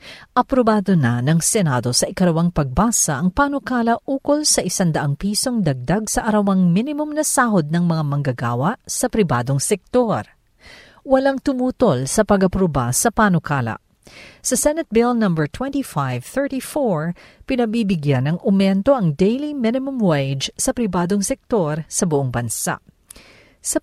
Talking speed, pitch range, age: 125 wpm, 160-235 Hz, 50-69